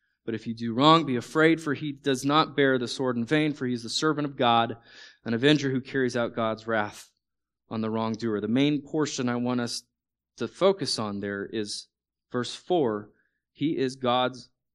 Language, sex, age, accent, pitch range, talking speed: English, male, 20-39, American, 120-155 Hz, 200 wpm